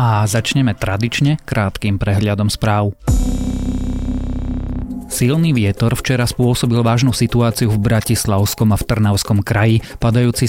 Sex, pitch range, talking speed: male, 100-120 Hz, 110 wpm